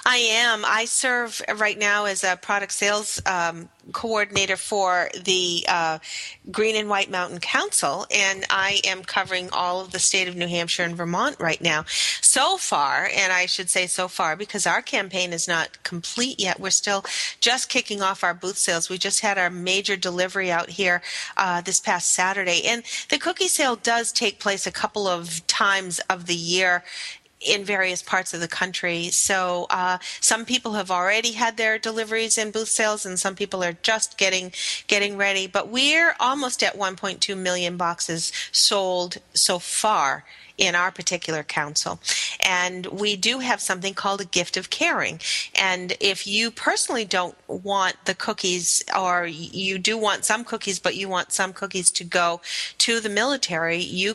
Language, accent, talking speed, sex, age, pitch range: English, American, 175 wpm, female, 40-59, 180-215 Hz